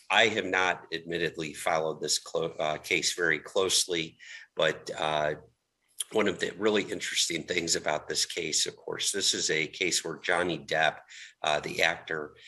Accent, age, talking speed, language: American, 50-69, 165 wpm, English